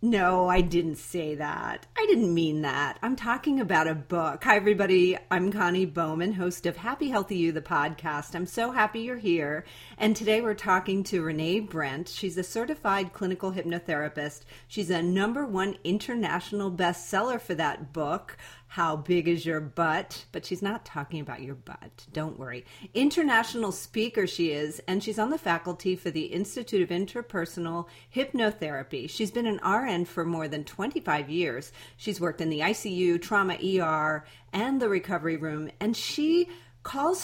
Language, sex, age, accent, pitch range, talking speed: English, female, 40-59, American, 160-215 Hz, 170 wpm